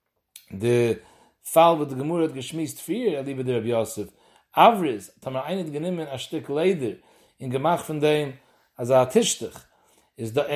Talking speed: 175 wpm